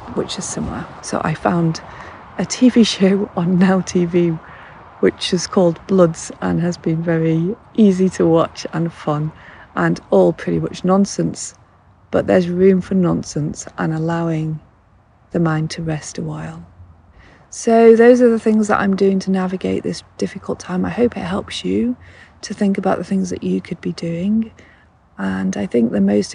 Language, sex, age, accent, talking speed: English, female, 40-59, British, 175 wpm